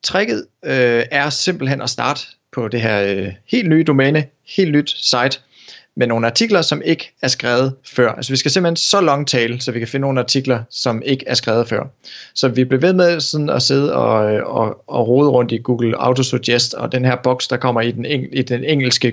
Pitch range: 120-140 Hz